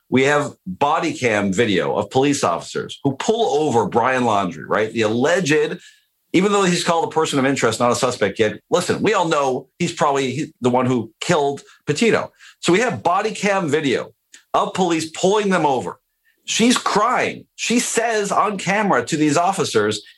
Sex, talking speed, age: male, 175 wpm, 50-69